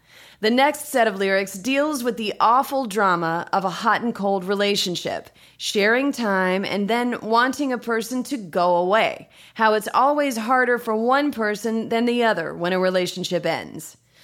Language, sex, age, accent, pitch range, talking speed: English, female, 30-49, American, 175-245 Hz, 170 wpm